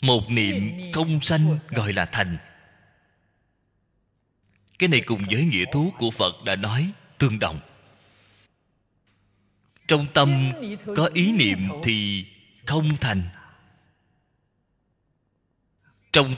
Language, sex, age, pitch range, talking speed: Vietnamese, male, 20-39, 100-165 Hz, 105 wpm